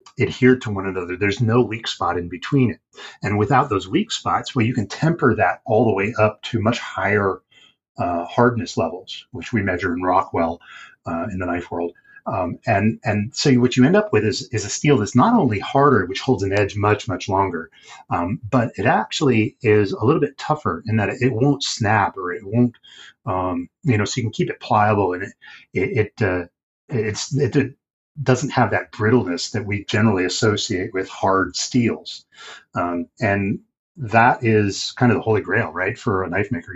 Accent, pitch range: American, 100-125 Hz